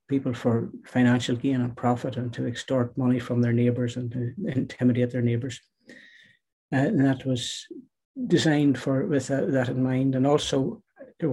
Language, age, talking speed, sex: English, 60-79, 170 wpm, male